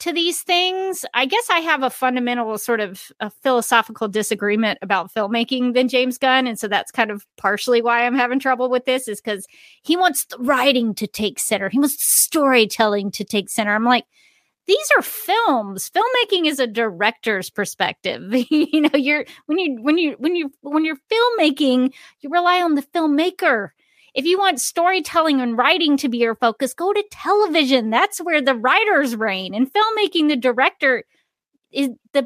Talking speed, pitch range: 180 wpm, 215-300 Hz